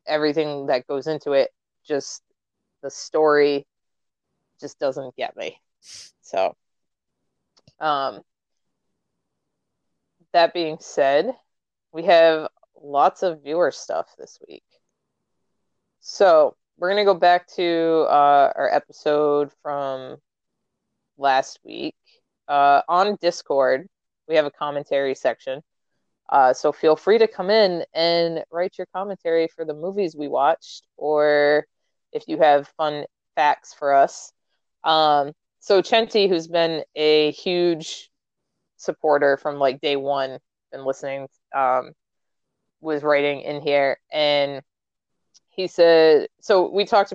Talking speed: 120 wpm